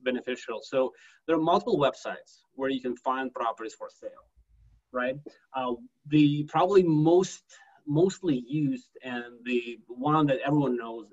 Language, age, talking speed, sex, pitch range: English, 30-49, 140 wpm, male, 125-165 Hz